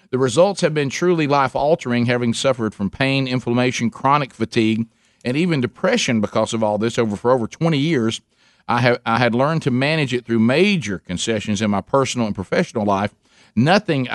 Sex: male